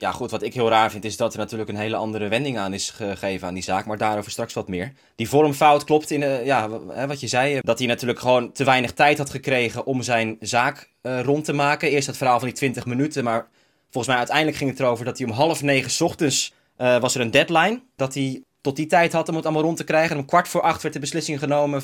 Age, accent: 20-39, Dutch